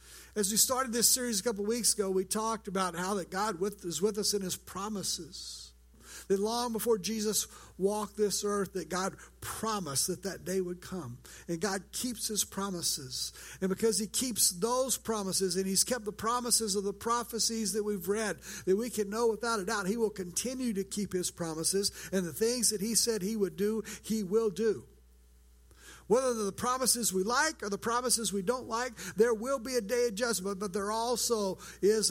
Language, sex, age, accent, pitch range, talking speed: English, male, 60-79, American, 170-220 Hz, 200 wpm